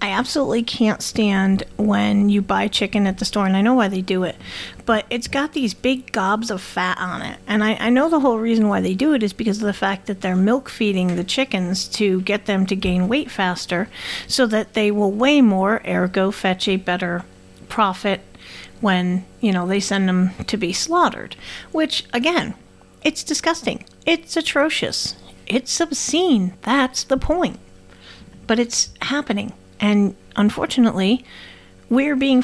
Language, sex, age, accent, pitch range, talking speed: English, female, 40-59, American, 185-240 Hz, 175 wpm